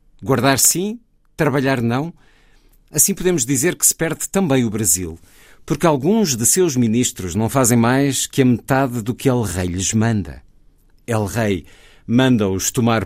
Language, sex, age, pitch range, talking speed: Portuguese, male, 50-69, 100-145 Hz, 145 wpm